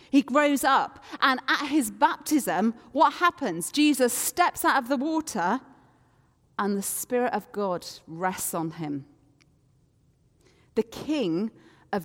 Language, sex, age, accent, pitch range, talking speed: English, female, 40-59, British, 190-265 Hz, 130 wpm